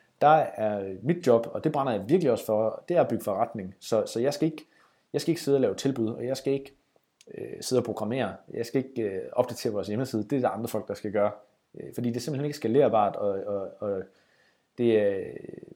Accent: native